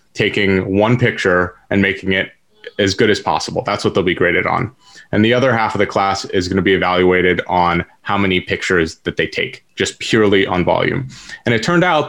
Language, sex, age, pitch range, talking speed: English, male, 30-49, 95-120 Hz, 215 wpm